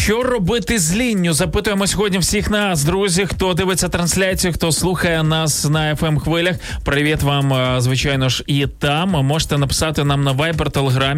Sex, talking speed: male, 155 wpm